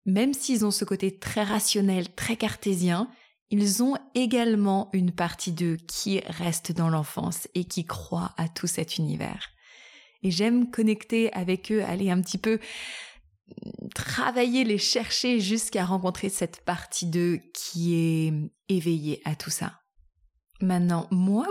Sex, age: female, 20-39